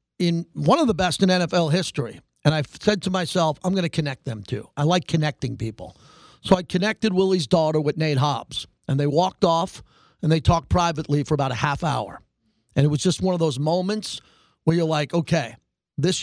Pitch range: 155-190 Hz